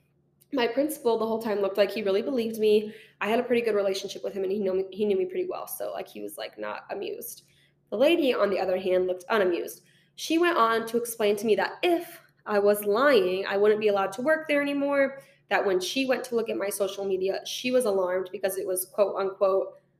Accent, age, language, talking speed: American, 10-29, English, 245 wpm